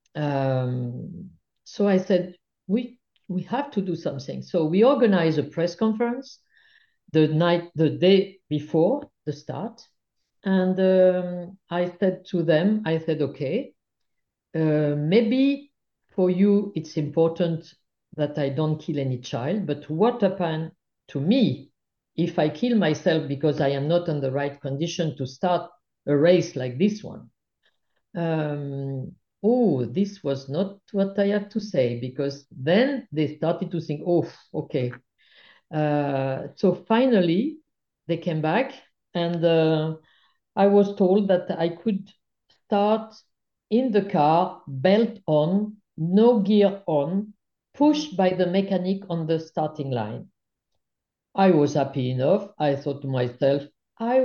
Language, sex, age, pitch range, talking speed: English, female, 50-69, 150-200 Hz, 140 wpm